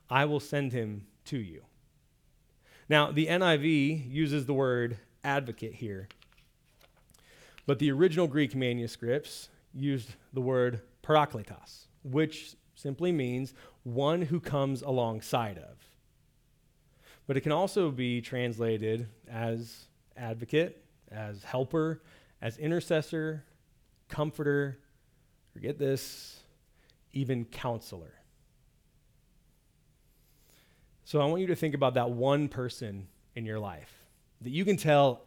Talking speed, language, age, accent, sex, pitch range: 110 wpm, English, 30-49, American, male, 120-155 Hz